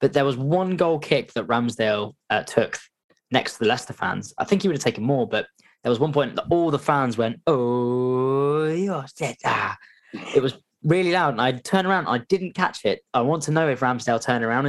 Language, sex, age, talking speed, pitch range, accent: English, male, 10-29, 225 wpm, 115-145 Hz, British